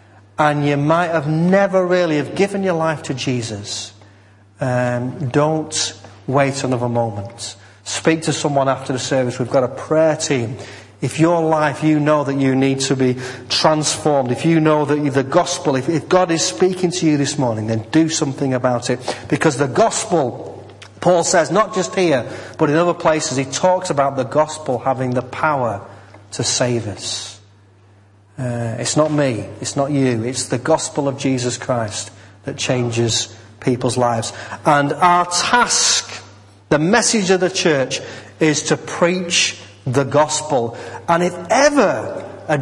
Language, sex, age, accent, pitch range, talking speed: English, male, 40-59, British, 120-160 Hz, 165 wpm